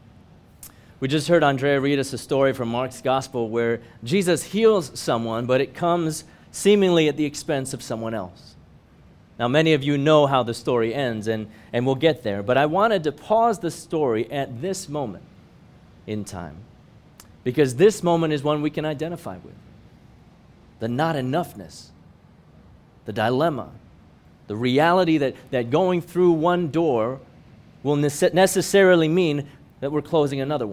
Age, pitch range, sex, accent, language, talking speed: 30-49, 120-155 Hz, male, American, English, 155 wpm